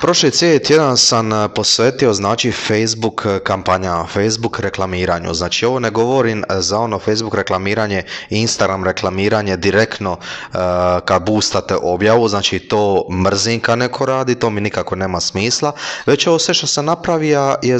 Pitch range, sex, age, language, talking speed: 100-135 Hz, male, 20-39, English, 140 wpm